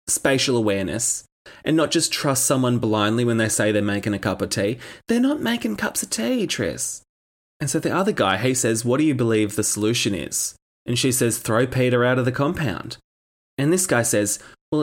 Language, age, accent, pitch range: English, 20-39, Australian, 110-165 Hz